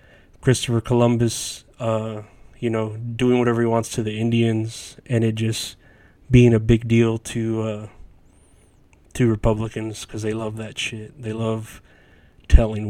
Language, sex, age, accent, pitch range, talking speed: English, male, 30-49, American, 110-125 Hz, 145 wpm